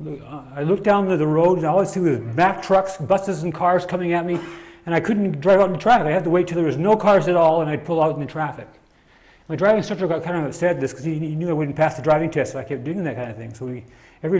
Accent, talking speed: American, 315 wpm